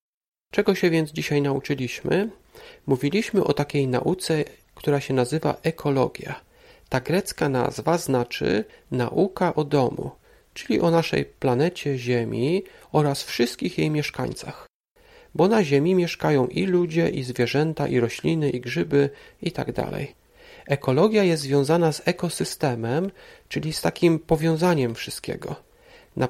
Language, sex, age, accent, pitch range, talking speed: Polish, male, 40-59, native, 140-190 Hz, 125 wpm